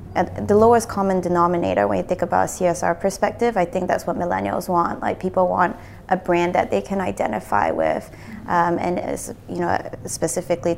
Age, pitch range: 20-39, 170-190 Hz